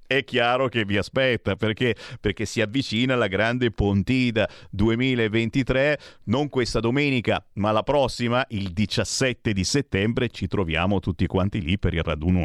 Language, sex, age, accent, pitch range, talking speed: Italian, male, 40-59, native, 100-135 Hz, 150 wpm